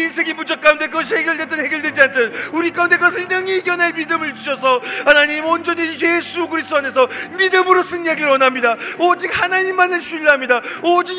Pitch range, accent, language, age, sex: 280-340 Hz, native, Korean, 40-59, male